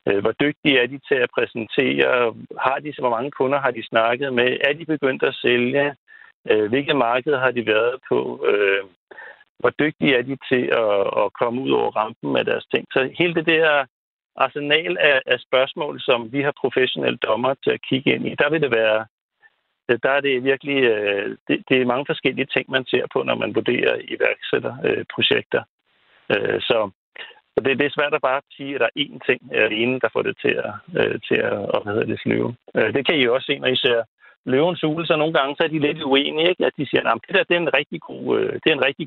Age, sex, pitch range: 60-79, male, 125-165 Hz